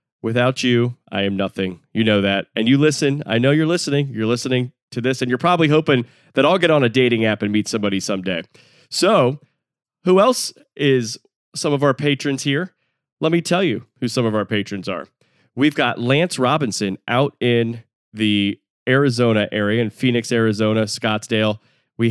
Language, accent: English, American